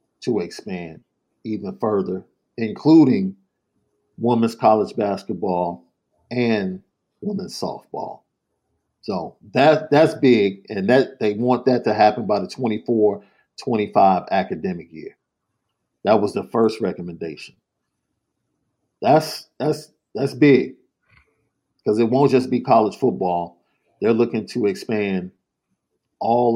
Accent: American